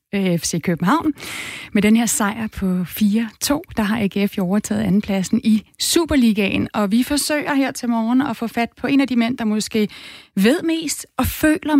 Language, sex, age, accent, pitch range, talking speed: Danish, female, 30-49, native, 205-245 Hz, 180 wpm